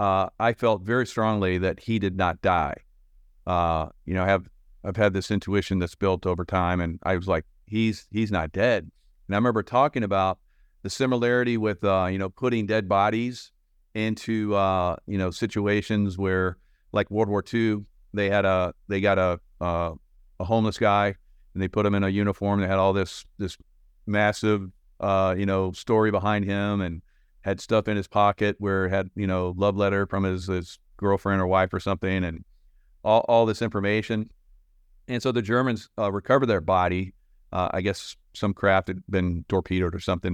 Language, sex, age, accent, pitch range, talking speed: English, male, 50-69, American, 90-110 Hz, 190 wpm